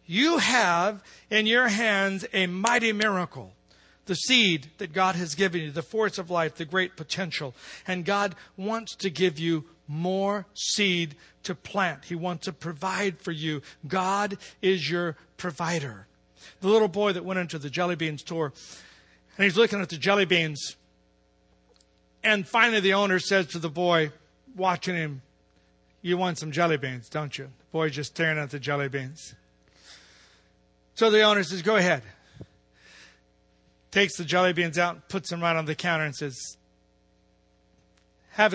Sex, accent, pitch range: male, American, 145-195 Hz